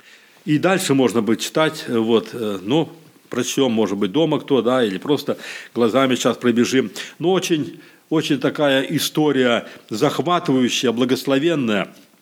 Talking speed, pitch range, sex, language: 125 wpm, 125-155 Hz, male, Russian